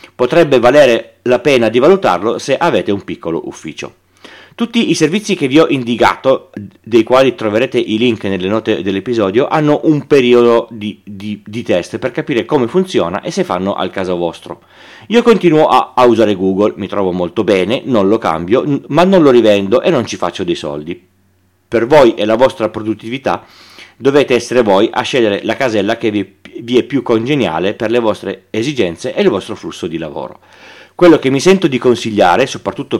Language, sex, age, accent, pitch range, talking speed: Italian, male, 40-59, native, 100-135 Hz, 185 wpm